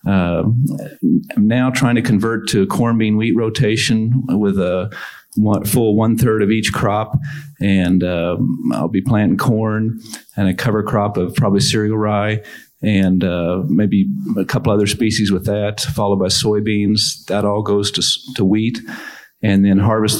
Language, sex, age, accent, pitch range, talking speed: English, male, 50-69, American, 100-110 Hz, 155 wpm